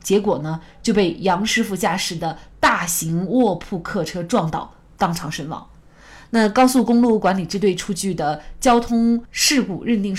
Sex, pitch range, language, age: female, 175-235 Hz, Chinese, 20-39